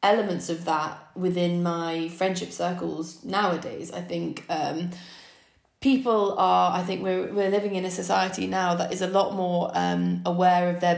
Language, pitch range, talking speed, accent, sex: English, 165-180 Hz, 170 wpm, British, female